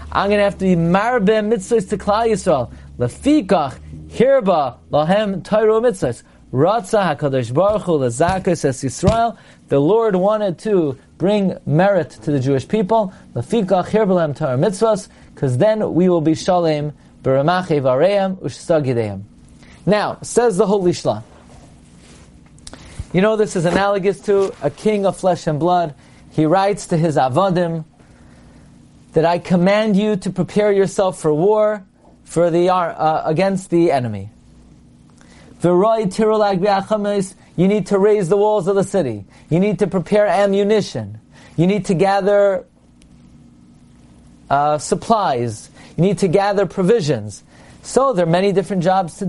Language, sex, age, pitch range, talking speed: English, male, 40-59, 150-205 Hz, 140 wpm